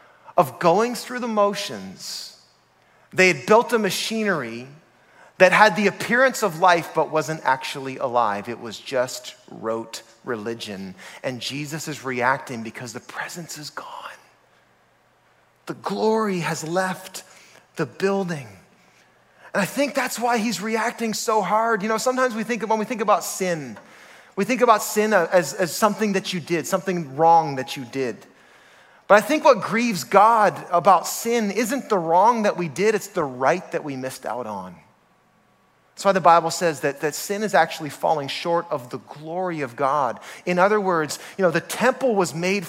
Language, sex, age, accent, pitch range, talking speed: English, male, 30-49, American, 160-225 Hz, 170 wpm